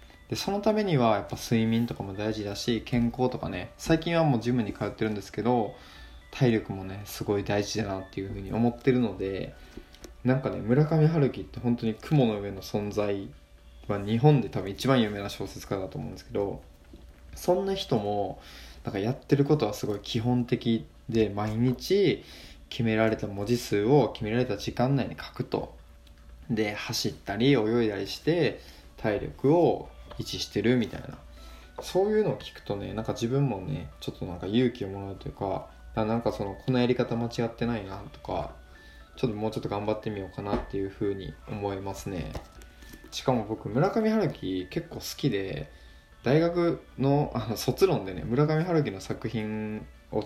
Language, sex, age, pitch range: Japanese, male, 20-39, 95-125 Hz